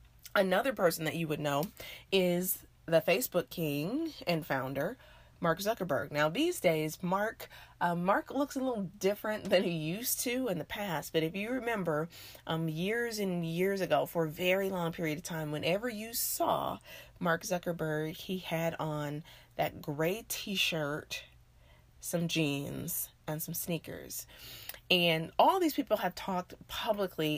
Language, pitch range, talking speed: English, 155-195 Hz, 155 wpm